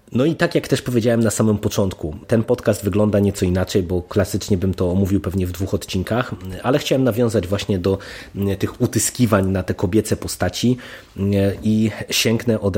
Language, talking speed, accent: Polish, 175 wpm, native